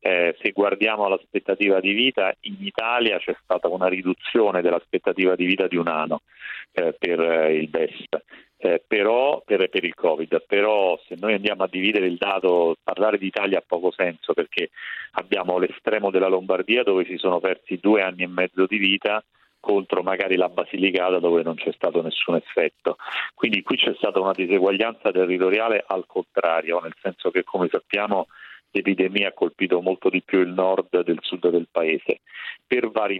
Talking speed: 175 wpm